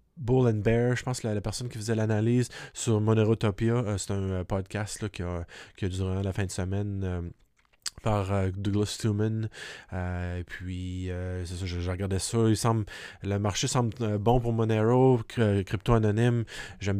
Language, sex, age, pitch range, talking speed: French, male, 20-39, 95-115 Hz, 175 wpm